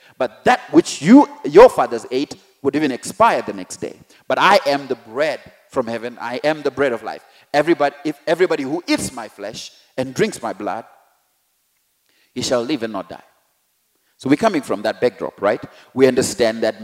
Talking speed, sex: 190 wpm, male